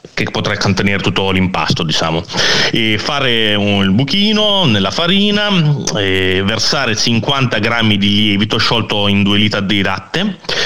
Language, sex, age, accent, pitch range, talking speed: Italian, male, 30-49, native, 110-145 Hz, 140 wpm